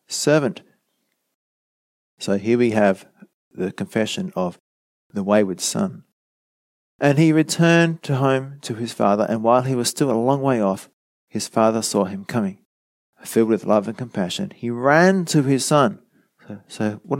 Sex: male